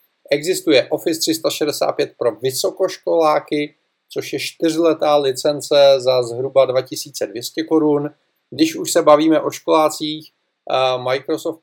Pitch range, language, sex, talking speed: 140-160 Hz, Czech, male, 105 wpm